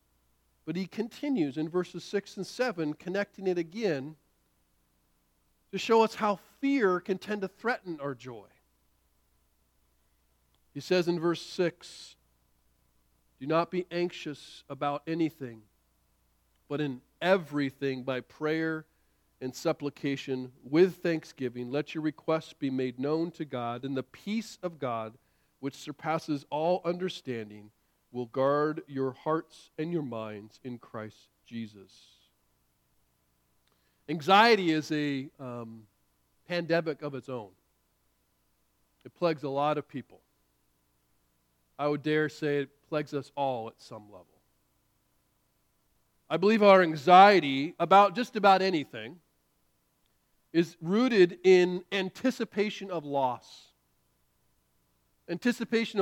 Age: 40-59